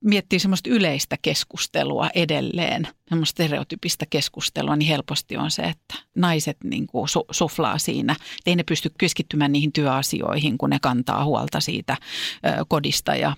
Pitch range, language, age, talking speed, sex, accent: 145-190 Hz, Finnish, 40-59, 145 wpm, female, native